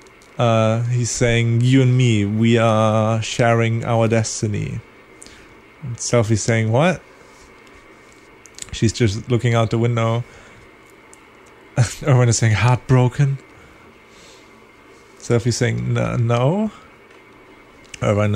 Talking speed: 90 wpm